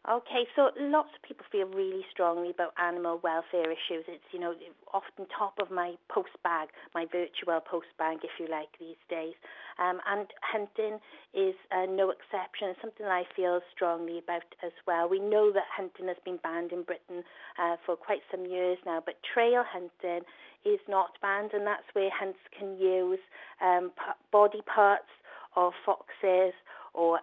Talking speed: 175 wpm